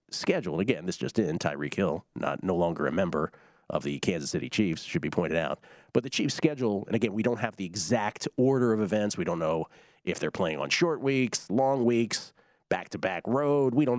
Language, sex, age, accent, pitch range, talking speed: English, male, 40-59, American, 100-135 Hz, 215 wpm